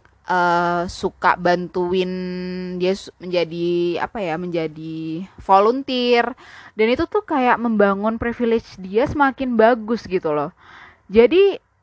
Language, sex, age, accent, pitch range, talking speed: Indonesian, female, 20-39, native, 180-245 Hz, 105 wpm